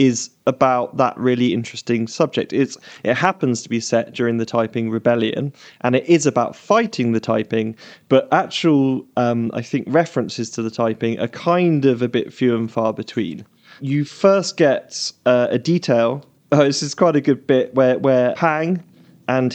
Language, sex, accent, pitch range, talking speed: English, male, British, 120-145 Hz, 170 wpm